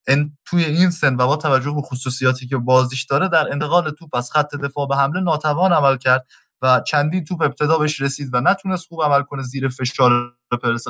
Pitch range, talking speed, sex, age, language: 130-175 Hz, 205 wpm, male, 20-39, Persian